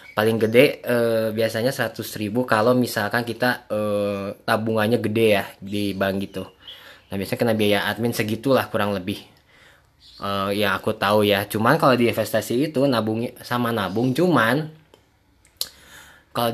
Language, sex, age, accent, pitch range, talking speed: Indonesian, male, 20-39, native, 105-125 Hz, 140 wpm